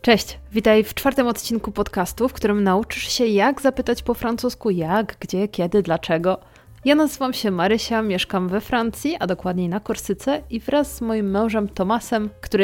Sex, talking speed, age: female, 170 wpm, 30-49